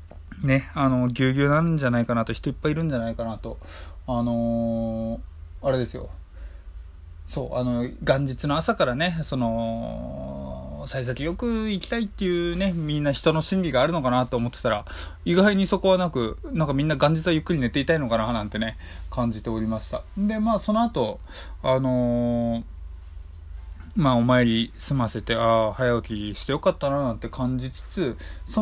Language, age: Japanese, 20-39